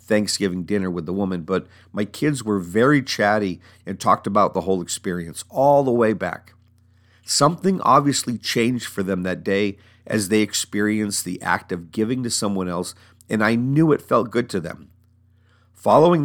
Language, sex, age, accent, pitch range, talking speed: English, male, 50-69, American, 95-120 Hz, 175 wpm